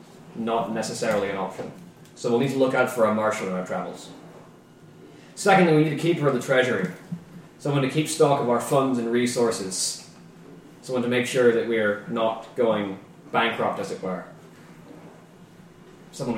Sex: male